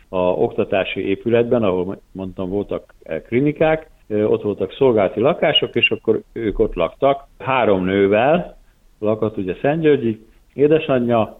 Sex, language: male, Hungarian